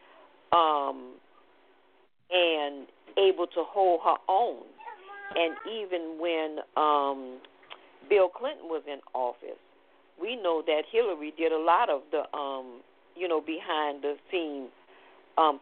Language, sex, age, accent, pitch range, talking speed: English, female, 50-69, American, 150-215 Hz, 125 wpm